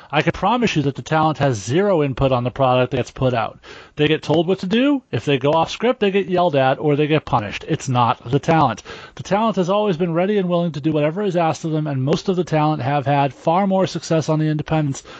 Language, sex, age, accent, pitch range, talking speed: English, male, 30-49, American, 145-175 Hz, 270 wpm